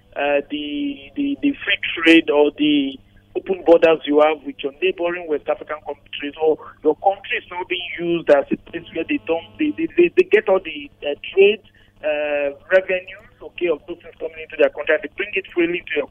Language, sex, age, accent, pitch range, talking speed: English, male, 50-69, Nigerian, 150-255 Hz, 210 wpm